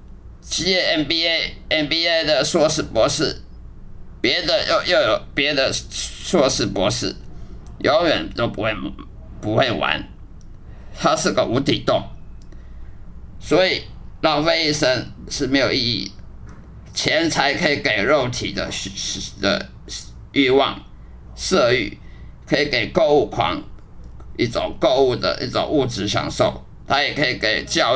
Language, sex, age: Chinese, male, 50-69